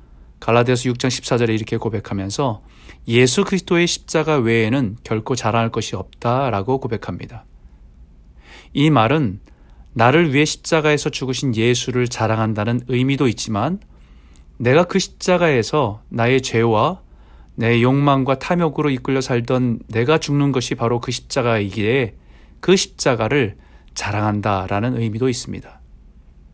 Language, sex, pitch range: Korean, male, 105-145 Hz